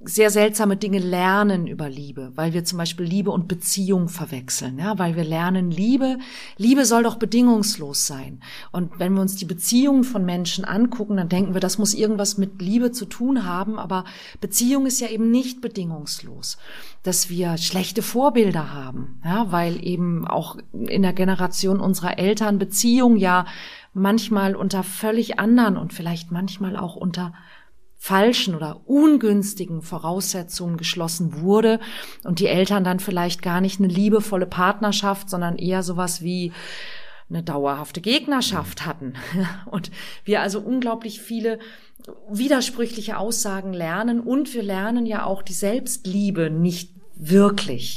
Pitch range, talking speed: 175-215 Hz, 145 wpm